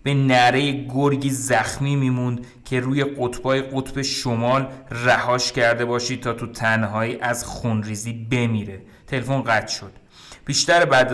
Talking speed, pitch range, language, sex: 135 wpm, 115-145 Hz, Persian, male